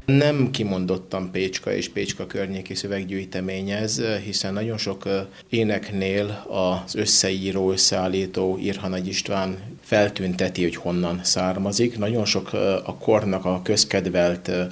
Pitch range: 90-100 Hz